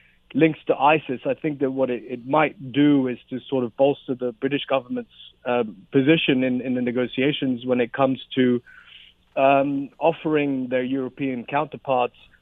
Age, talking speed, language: 40-59, 165 wpm, English